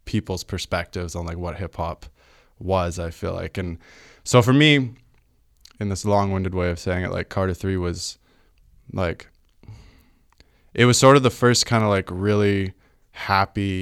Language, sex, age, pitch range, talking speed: English, male, 20-39, 85-105 Hz, 165 wpm